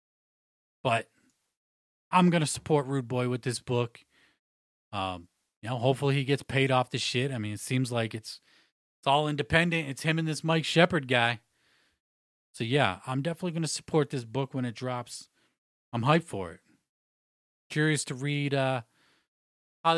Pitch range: 120-160 Hz